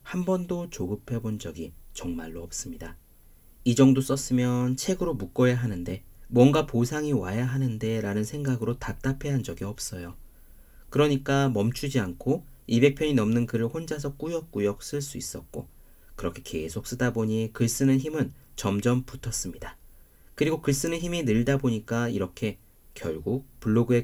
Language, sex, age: Korean, male, 40-59